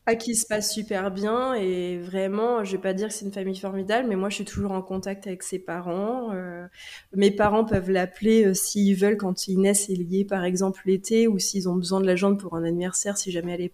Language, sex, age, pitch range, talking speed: French, female, 20-39, 185-215 Hz, 245 wpm